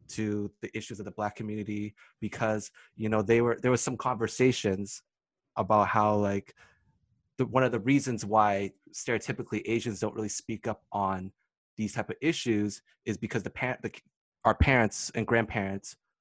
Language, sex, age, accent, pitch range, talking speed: English, male, 20-39, American, 105-120 Hz, 165 wpm